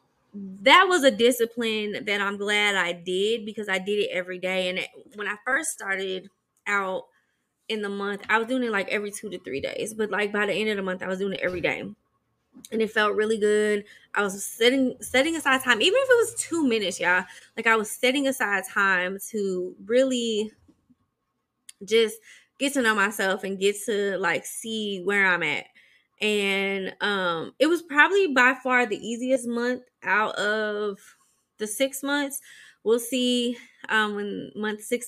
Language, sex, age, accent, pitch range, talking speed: English, female, 20-39, American, 195-245 Hz, 185 wpm